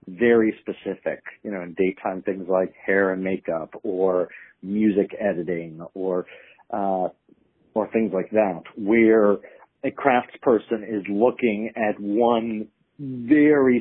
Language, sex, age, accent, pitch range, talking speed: English, male, 50-69, American, 100-115 Hz, 120 wpm